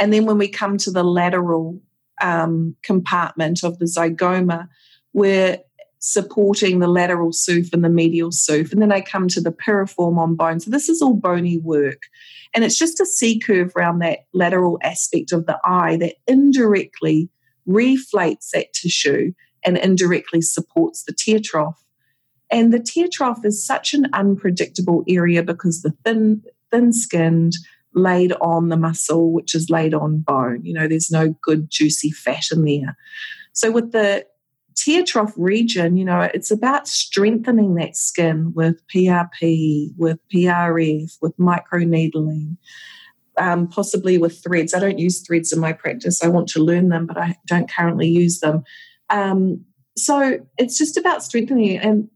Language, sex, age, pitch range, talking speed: English, female, 40-59, 165-215 Hz, 160 wpm